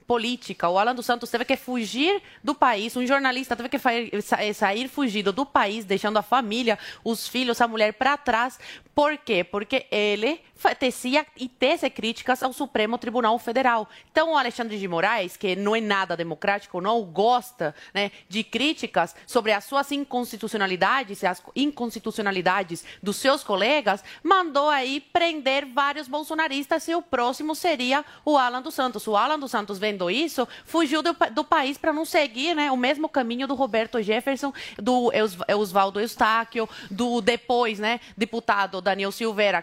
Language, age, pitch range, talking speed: Portuguese, 30-49, 205-275 Hz, 160 wpm